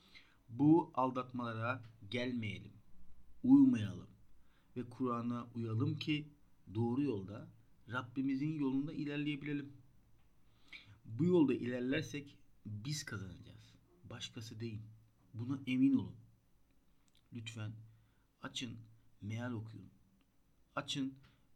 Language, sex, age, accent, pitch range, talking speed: Turkish, male, 50-69, native, 110-135 Hz, 80 wpm